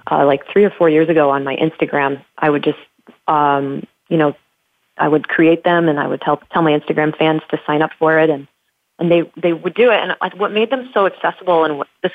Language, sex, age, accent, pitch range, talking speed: English, female, 30-49, American, 145-170 Hz, 245 wpm